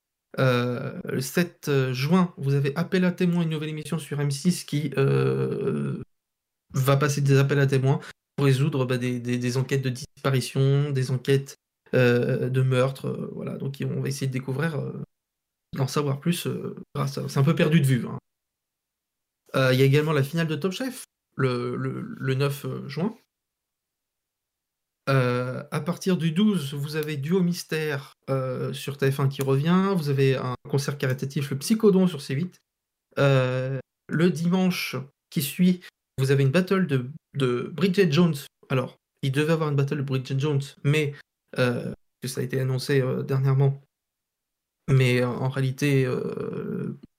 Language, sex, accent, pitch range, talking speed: French, male, French, 130-165 Hz, 165 wpm